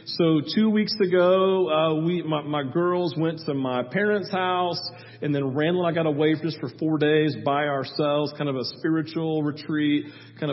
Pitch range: 140-165 Hz